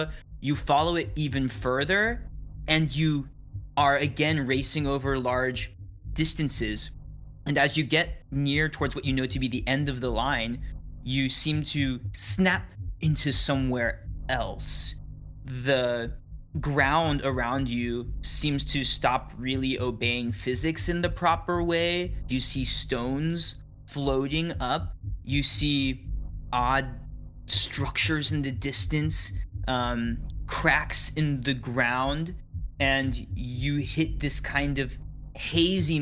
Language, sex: English, male